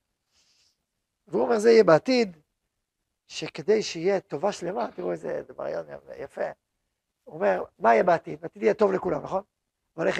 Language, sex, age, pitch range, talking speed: Hebrew, male, 40-59, 205-260 Hz, 145 wpm